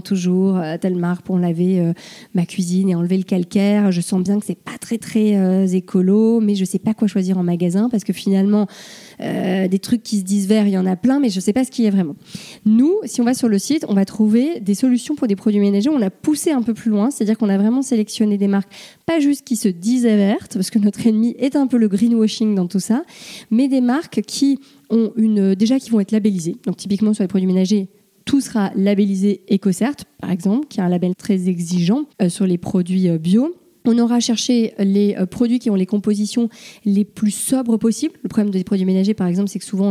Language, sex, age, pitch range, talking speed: French, female, 20-39, 190-230 Hz, 240 wpm